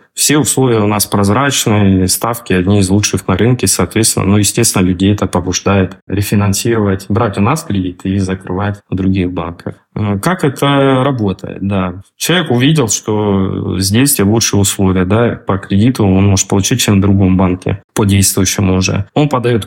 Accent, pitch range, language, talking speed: native, 95-125 Hz, Russian, 165 wpm